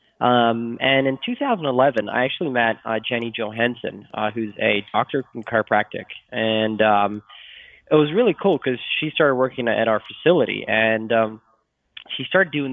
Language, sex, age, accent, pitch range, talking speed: English, male, 20-39, American, 115-140 Hz, 160 wpm